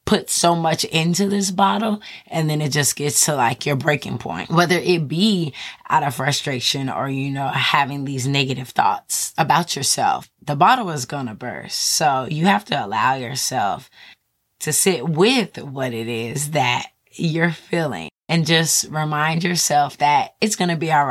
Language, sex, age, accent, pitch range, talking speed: English, female, 20-39, American, 135-170 Hz, 175 wpm